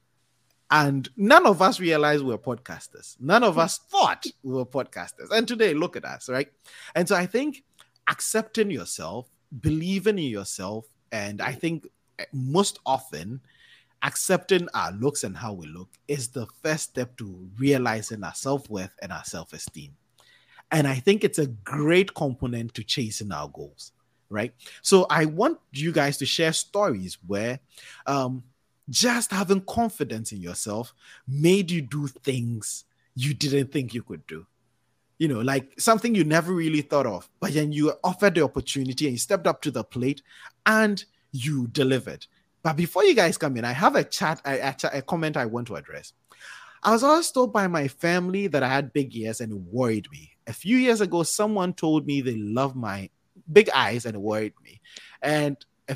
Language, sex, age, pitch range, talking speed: English, male, 30-49, 120-175 Hz, 180 wpm